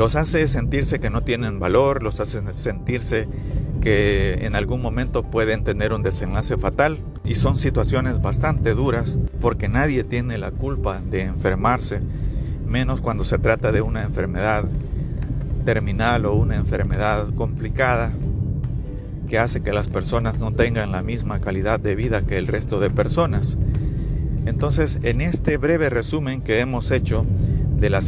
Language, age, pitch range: Spanish, 50-69, 105-130 Hz